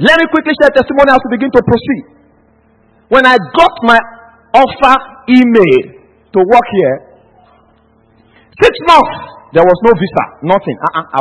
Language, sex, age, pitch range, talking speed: English, male, 50-69, 205-310 Hz, 145 wpm